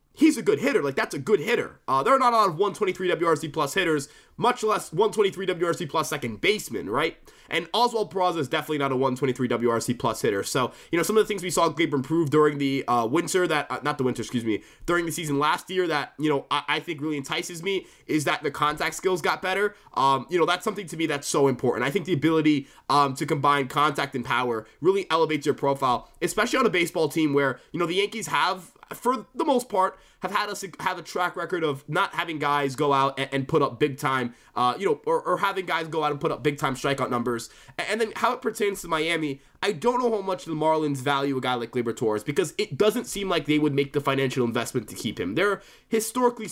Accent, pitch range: American, 140-185 Hz